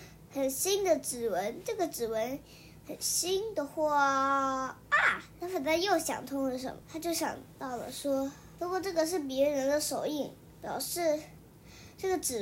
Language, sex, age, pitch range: Chinese, male, 20-39, 270-330 Hz